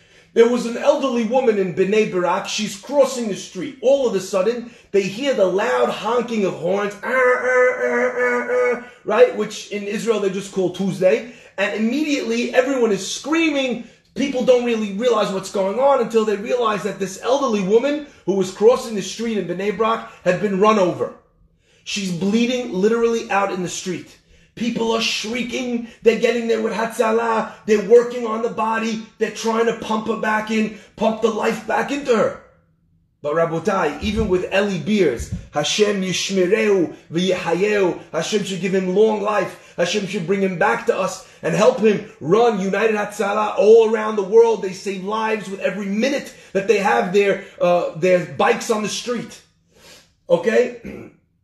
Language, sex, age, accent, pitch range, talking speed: English, male, 30-49, American, 195-235 Hz, 165 wpm